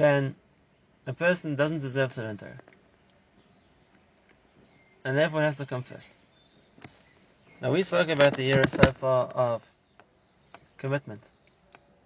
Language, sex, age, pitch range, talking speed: English, male, 30-49, 130-155 Hz, 115 wpm